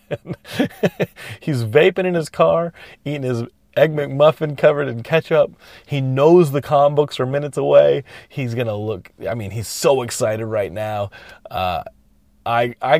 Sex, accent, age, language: male, American, 30-49, English